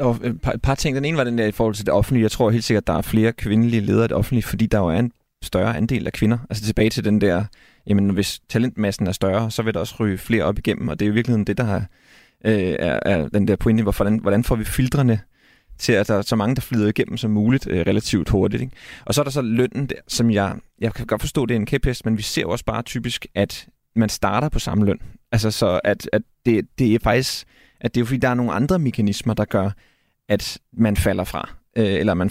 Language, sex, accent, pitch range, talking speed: Danish, male, native, 105-120 Hz, 245 wpm